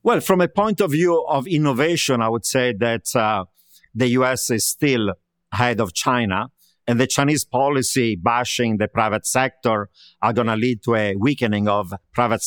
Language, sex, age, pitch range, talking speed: English, male, 50-69, 115-140 Hz, 180 wpm